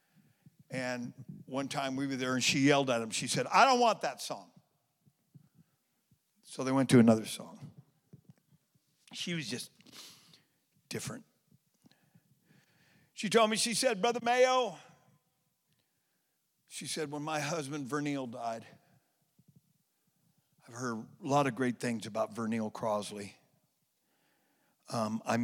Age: 50-69